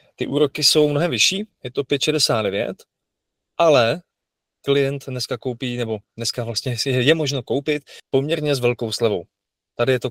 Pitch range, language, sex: 115-140 Hz, Czech, male